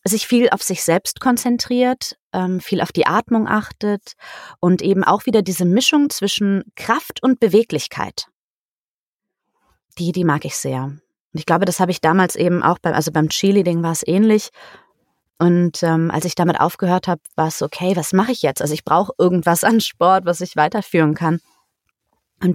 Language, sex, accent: German, female, German